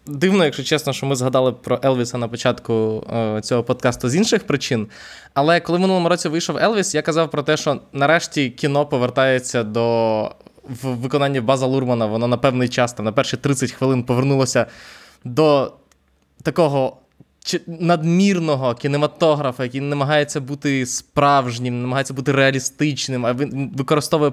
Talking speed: 145 wpm